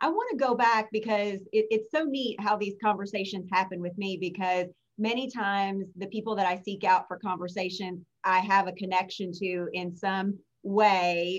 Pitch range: 190-220 Hz